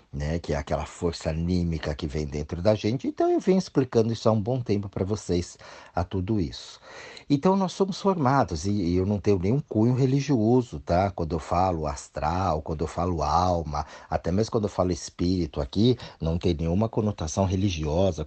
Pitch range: 80-105 Hz